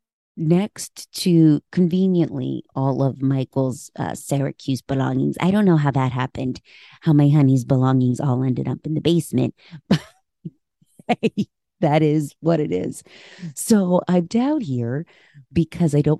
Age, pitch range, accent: 30-49, 135-175 Hz, American